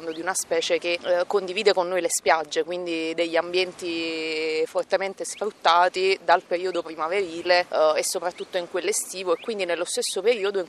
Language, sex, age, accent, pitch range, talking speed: Italian, female, 30-49, native, 165-195 Hz, 165 wpm